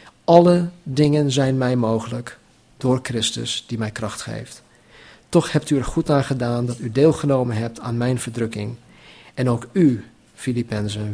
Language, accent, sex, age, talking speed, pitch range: Dutch, Dutch, male, 50-69, 155 wpm, 115-145 Hz